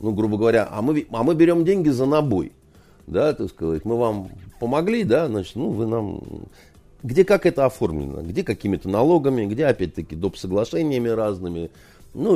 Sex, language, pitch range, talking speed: male, Russian, 95-160 Hz, 165 wpm